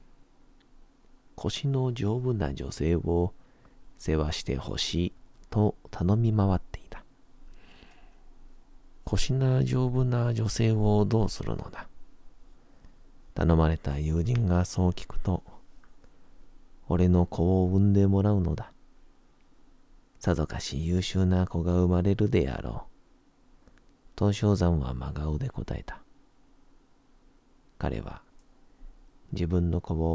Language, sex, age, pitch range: Japanese, male, 40-59, 80-100 Hz